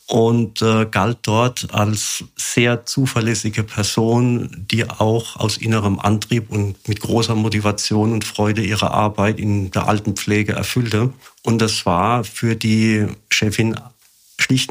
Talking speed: 130 wpm